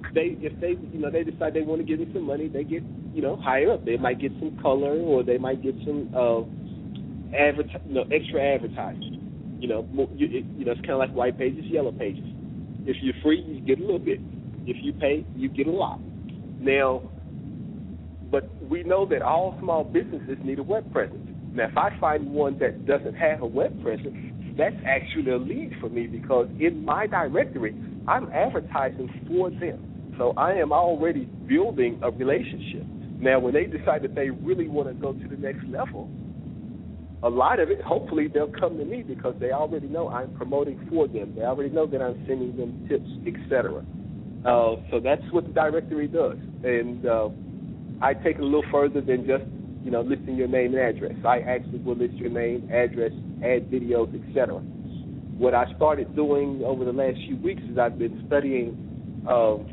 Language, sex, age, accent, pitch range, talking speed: English, male, 40-59, American, 125-155 Hz, 200 wpm